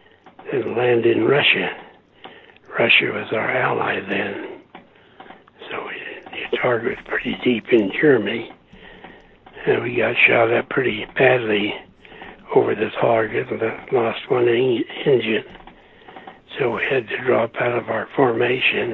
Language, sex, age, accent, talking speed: English, male, 60-79, American, 130 wpm